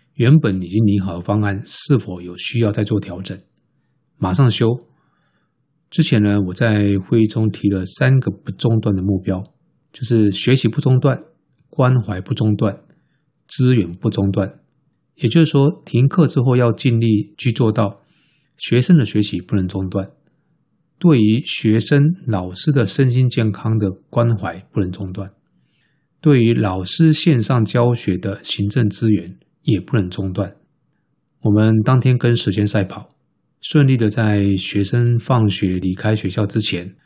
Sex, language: male, Chinese